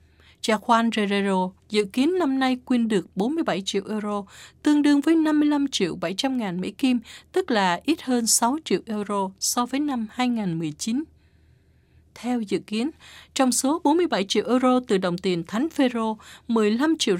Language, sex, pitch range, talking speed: Vietnamese, female, 195-270 Hz, 165 wpm